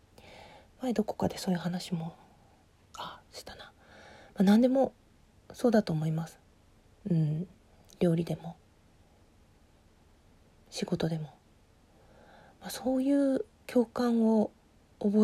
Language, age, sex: Japanese, 40-59, female